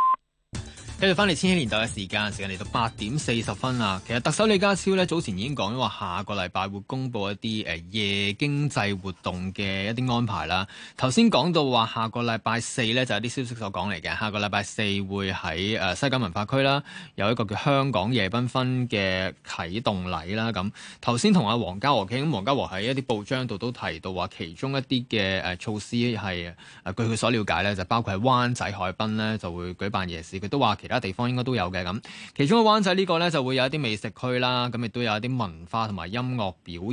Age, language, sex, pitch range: 20-39, Chinese, male, 100-130 Hz